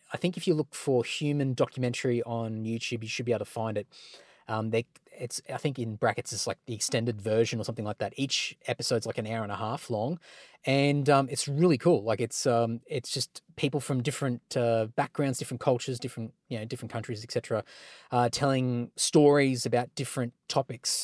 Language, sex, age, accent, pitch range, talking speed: English, male, 20-39, Australian, 115-140 Hz, 205 wpm